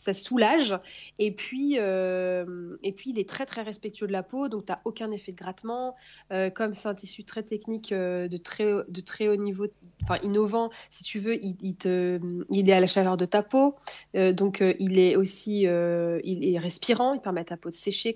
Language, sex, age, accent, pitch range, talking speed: French, female, 30-49, French, 180-220 Hz, 230 wpm